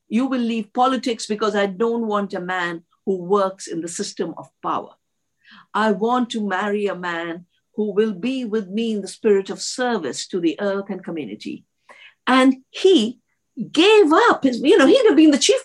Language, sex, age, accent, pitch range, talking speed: English, female, 50-69, Indian, 205-315 Hz, 190 wpm